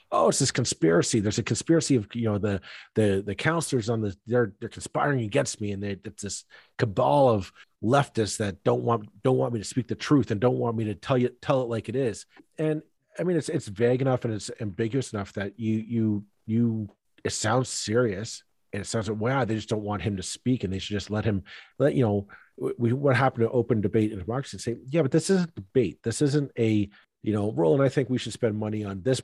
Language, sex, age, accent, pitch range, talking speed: English, male, 40-59, American, 105-125 Hz, 240 wpm